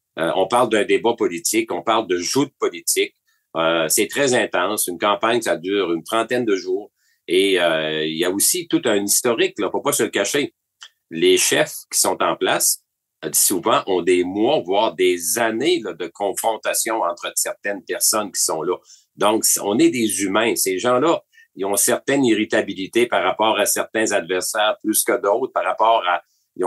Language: French